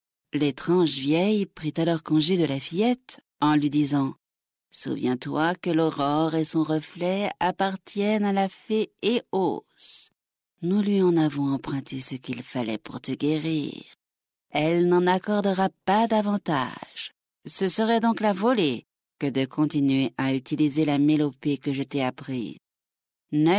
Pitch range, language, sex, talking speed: 145-200 Hz, French, female, 140 wpm